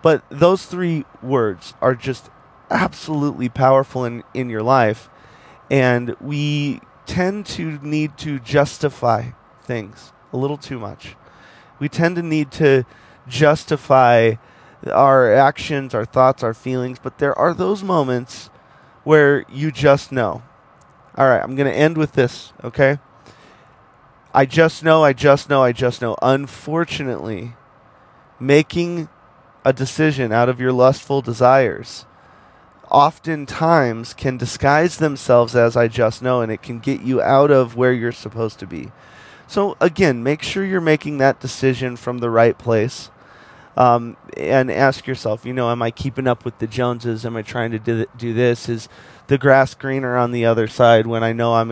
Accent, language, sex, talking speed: American, English, male, 155 wpm